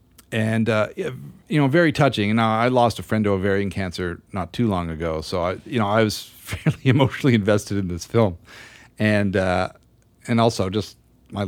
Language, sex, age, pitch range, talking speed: English, male, 40-59, 95-120 Hz, 190 wpm